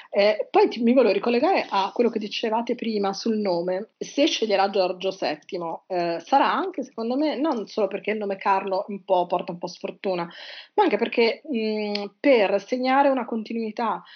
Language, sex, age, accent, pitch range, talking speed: Italian, female, 30-49, native, 195-235 Hz, 180 wpm